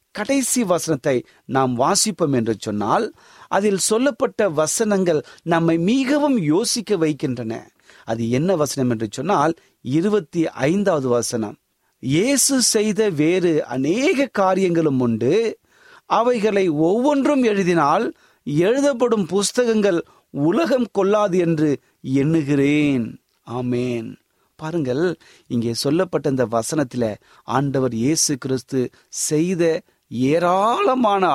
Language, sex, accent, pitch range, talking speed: Tamil, male, native, 130-205 Hz, 90 wpm